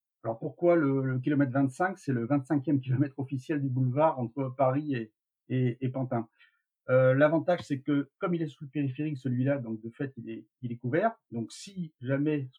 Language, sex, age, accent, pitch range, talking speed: French, male, 50-69, French, 120-145 Hz, 195 wpm